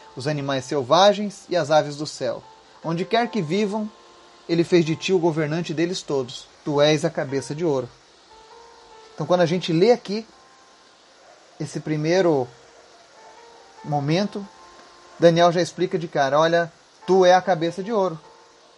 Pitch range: 165-215 Hz